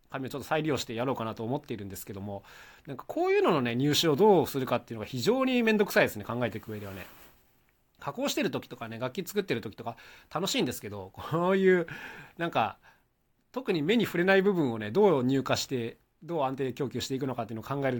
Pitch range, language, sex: 115-170 Hz, Japanese, male